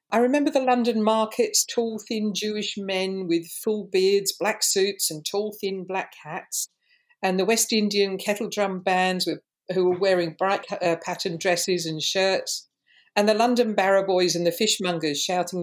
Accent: British